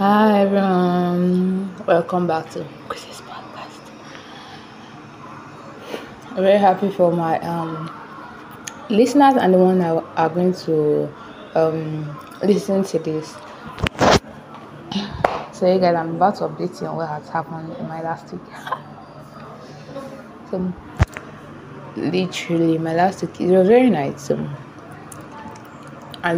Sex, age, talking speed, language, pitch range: female, 20-39, 120 wpm, English, 160-190 Hz